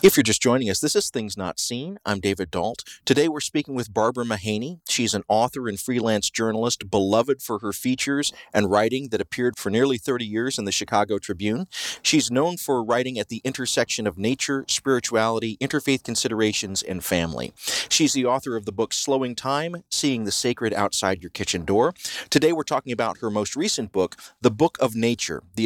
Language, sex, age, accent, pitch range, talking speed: English, male, 40-59, American, 105-130 Hz, 195 wpm